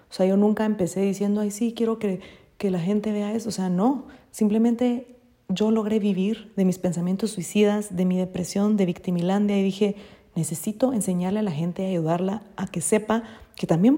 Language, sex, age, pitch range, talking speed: Spanish, female, 30-49, 185-225 Hz, 195 wpm